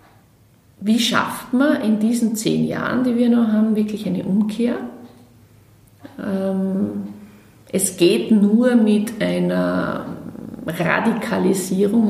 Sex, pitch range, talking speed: female, 185-225 Hz, 100 wpm